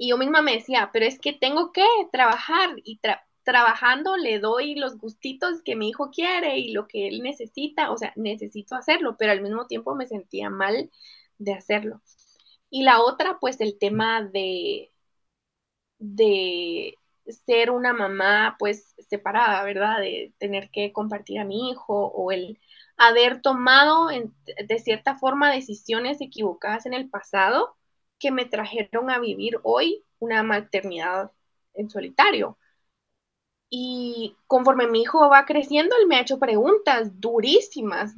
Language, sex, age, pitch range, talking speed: Spanish, female, 20-39, 210-275 Hz, 150 wpm